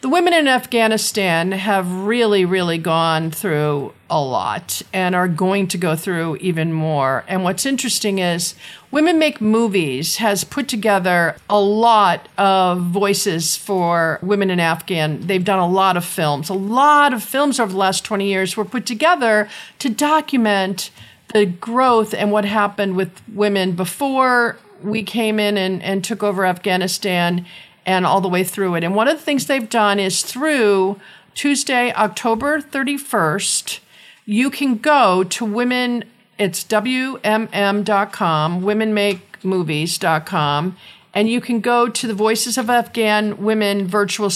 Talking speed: 150 wpm